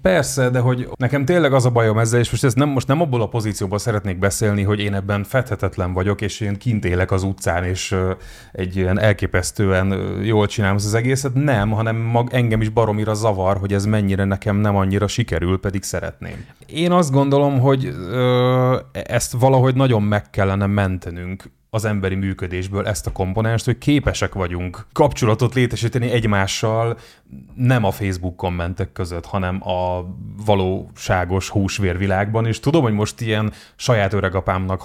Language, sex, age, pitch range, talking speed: Hungarian, male, 30-49, 95-125 Hz, 165 wpm